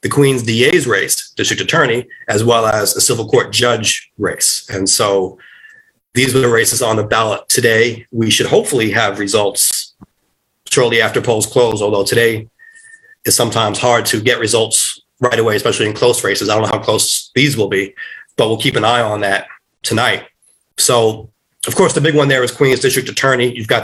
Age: 30-49